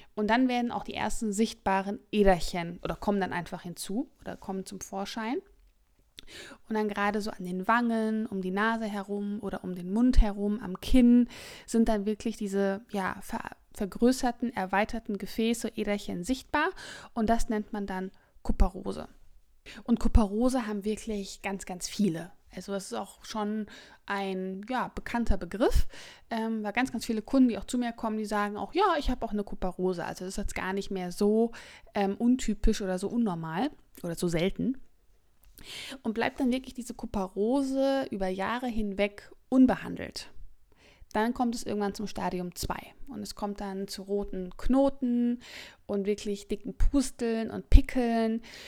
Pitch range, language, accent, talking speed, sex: 195-235 Hz, German, German, 165 wpm, female